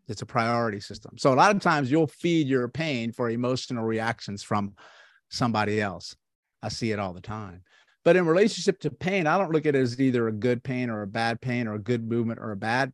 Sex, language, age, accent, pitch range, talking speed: male, English, 50-69, American, 120-155 Hz, 235 wpm